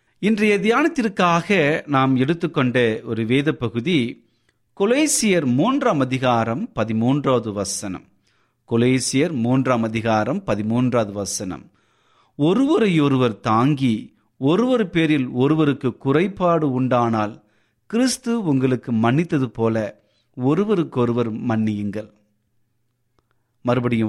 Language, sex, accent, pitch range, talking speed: Tamil, male, native, 110-155 Hz, 75 wpm